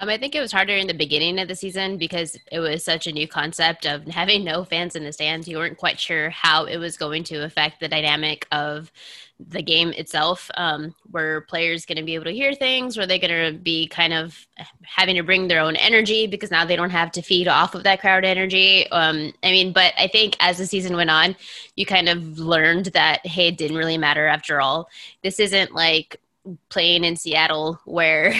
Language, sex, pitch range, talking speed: English, female, 165-190 Hz, 225 wpm